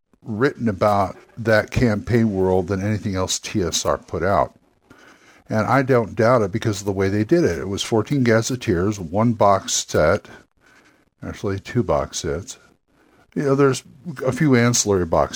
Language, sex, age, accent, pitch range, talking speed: English, male, 60-79, American, 105-135 Hz, 160 wpm